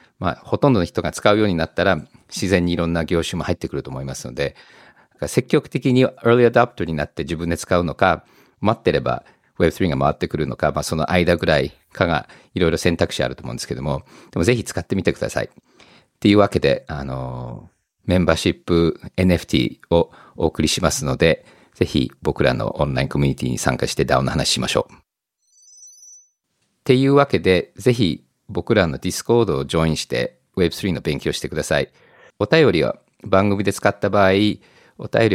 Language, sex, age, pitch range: Japanese, male, 50-69, 80-105 Hz